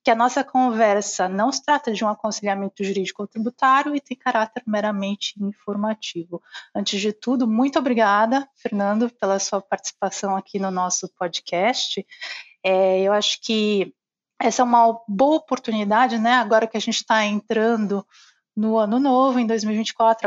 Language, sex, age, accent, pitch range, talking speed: Portuguese, female, 20-39, Brazilian, 210-250 Hz, 150 wpm